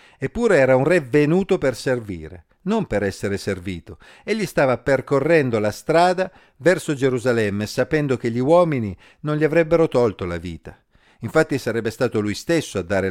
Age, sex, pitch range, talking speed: 50-69, male, 105-155 Hz, 160 wpm